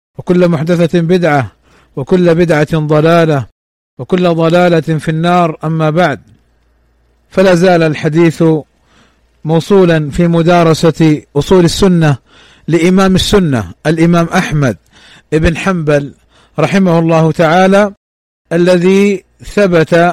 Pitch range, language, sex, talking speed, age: 155-180 Hz, Arabic, male, 90 wpm, 50-69